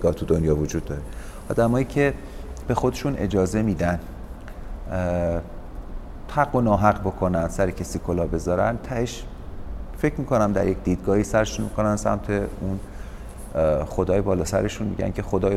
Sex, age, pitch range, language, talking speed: male, 40-59, 90-115 Hz, Persian, 135 wpm